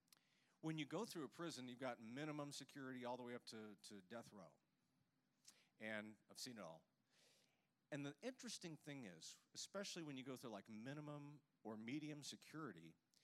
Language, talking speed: English, 170 wpm